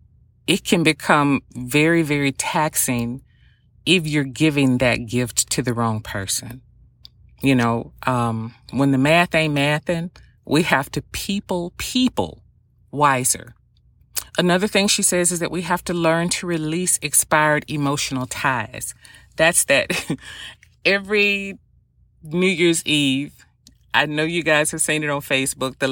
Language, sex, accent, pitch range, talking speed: English, female, American, 130-165 Hz, 140 wpm